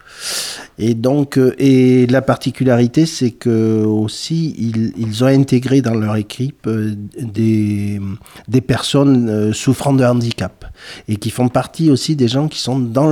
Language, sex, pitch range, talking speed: French, male, 105-135 Hz, 140 wpm